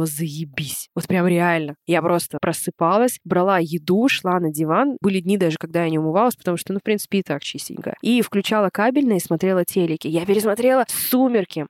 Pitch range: 170-210 Hz